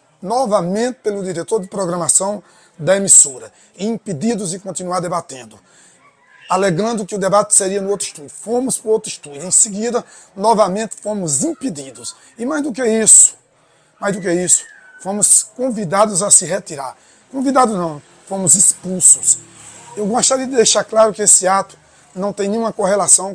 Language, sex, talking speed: Portuguese, male, 150 wpm